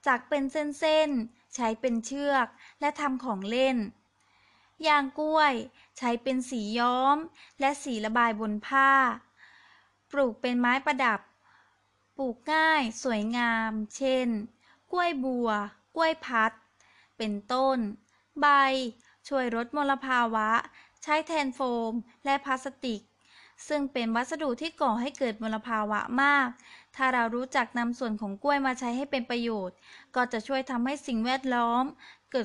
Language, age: Thai, 20-39